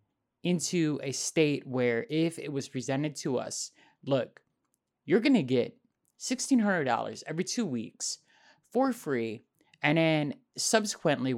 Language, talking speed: English, 130 wpm